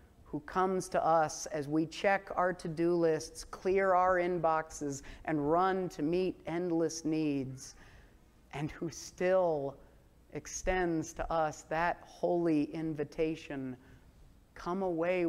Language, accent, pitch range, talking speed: English, American, 145-170 Hz, 120 wpm